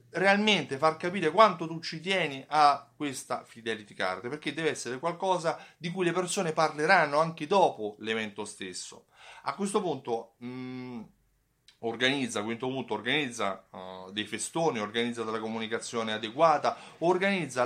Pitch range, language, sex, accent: 115-170 Hz, Italian, male, native